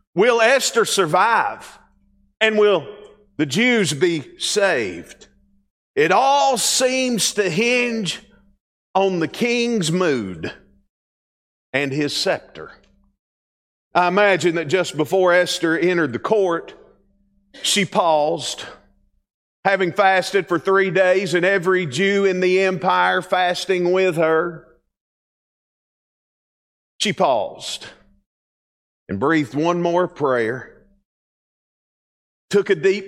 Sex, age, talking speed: male, 40-59, 100 wpm